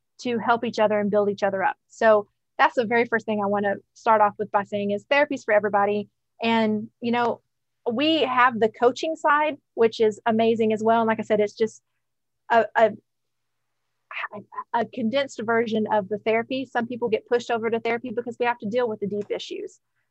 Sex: female